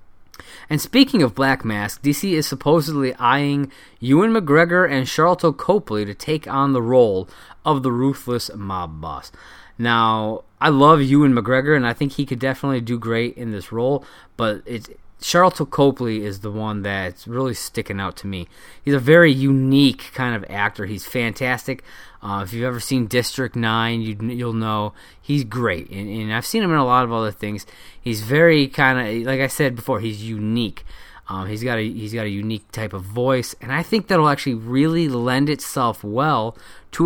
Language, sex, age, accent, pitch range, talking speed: English, male, 20-39, American, 100-135 Hz, 190 wpm